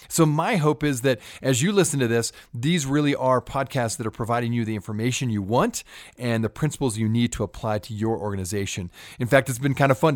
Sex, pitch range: male, 115-155 Hz